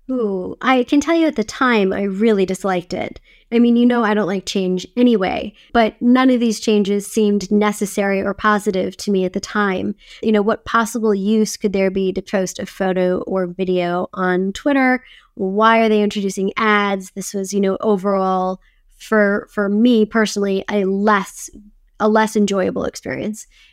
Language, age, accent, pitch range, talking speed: English, 20-39, American, 200-235 Hz, 180 wpm